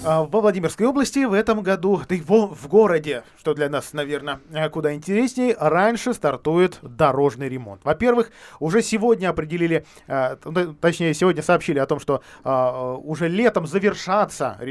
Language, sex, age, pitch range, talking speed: Russian, male, 20-39, 145-205 Hz, 140 wpm